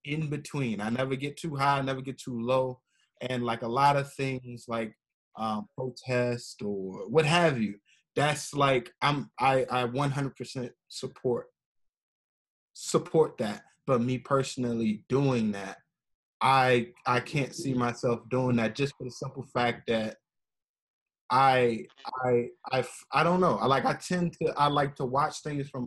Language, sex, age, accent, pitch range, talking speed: English, male, 20-39, American, 125-155 Hz, 160 wpm